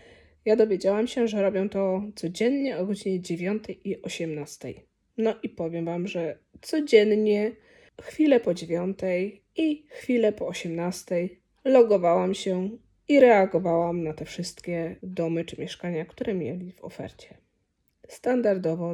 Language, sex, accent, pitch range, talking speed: Polish, female, native, 175-220 Hz, 125 wpm